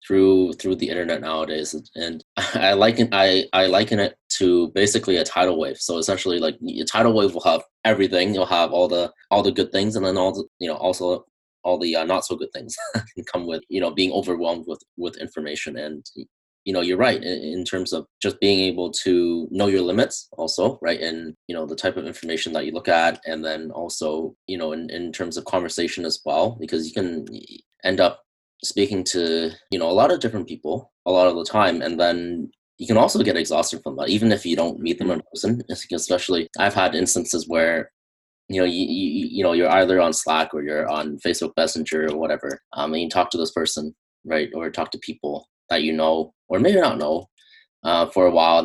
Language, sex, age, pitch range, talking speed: English, male, 20-39, 80-95 Hz, 220 wpm